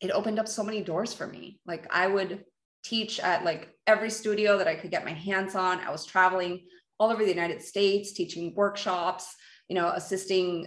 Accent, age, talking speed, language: American, 30-49, 200 wpm, English